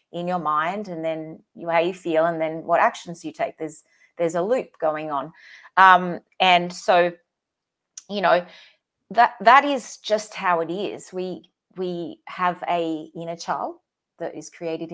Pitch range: 165-205 Hz